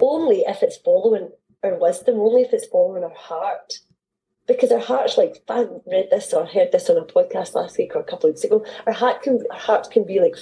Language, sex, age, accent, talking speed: English, female, 30-49, British, 230 wpm